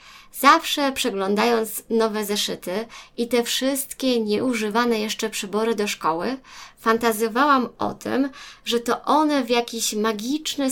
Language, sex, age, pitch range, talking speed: Polish, female, 20-39, 205-260 Hz, 120 wpm